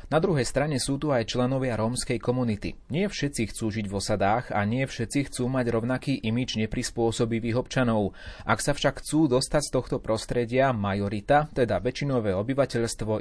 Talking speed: 165 wpm